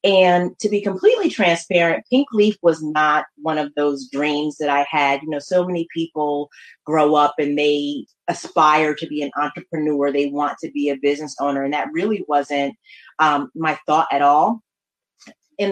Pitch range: 150-185 Hz